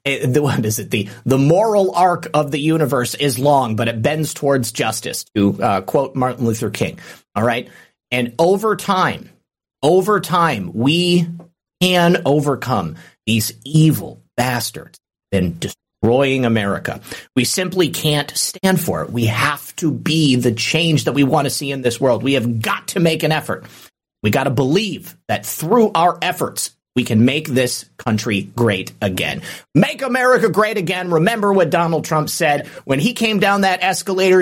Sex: male